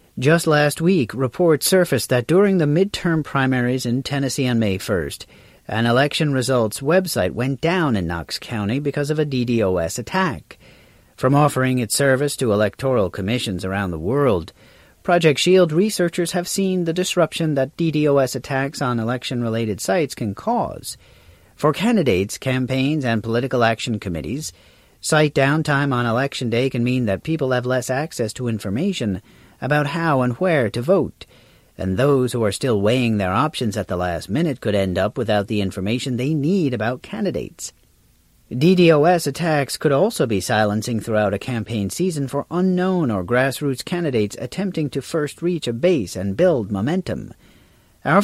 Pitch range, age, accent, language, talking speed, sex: 110-155 Hz, 40-59, American, English, 160 wpm, male